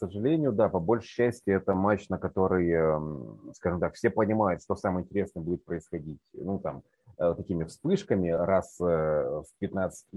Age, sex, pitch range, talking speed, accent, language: 30-49, male, 85-100 Hz, 155 wpm, native, Russian